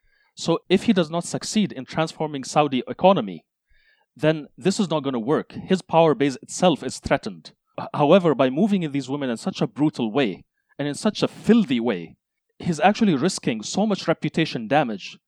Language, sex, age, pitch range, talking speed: English, male, 30-49, 140-180 Hz, 185 wpm